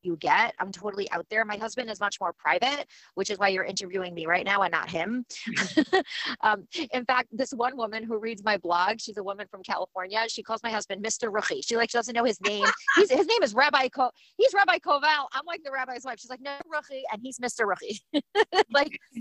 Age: 30-49